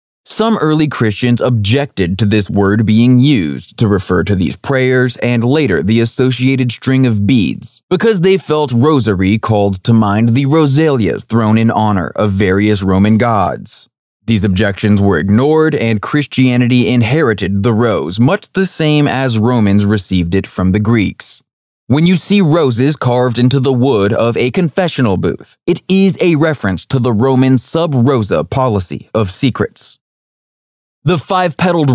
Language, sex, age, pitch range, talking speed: English, male, 20-39, 110-145 Hz, 150 wpm